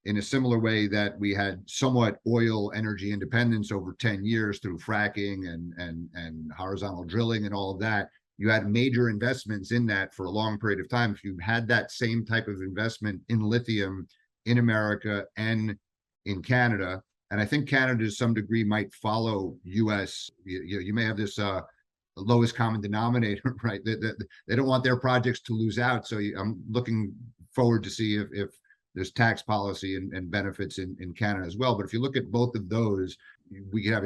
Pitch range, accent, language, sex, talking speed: 95-115 Hz, American, English, male, 195 wpm